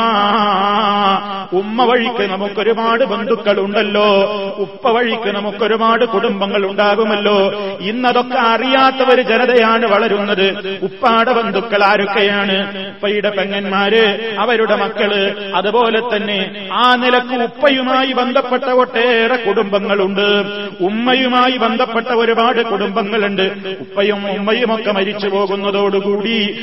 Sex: male